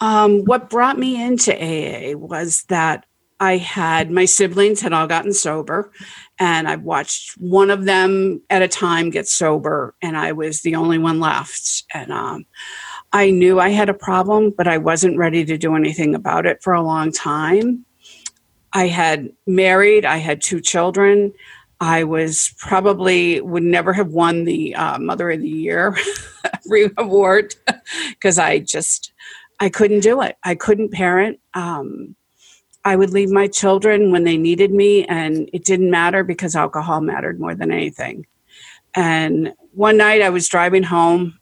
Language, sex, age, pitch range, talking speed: English, female, 50-69, 165-200 Hz, 165 wpm